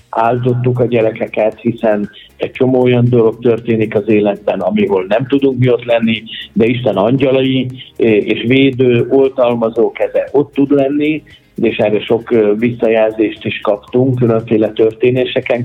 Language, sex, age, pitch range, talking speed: Hungarian, male, 50-69, 110-130 Hz, 135 wpm